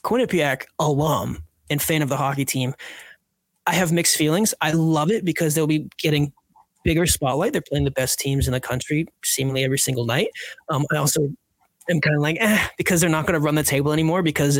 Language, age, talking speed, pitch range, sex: English, 20-39, 210 wpm, 140-170 Hz, male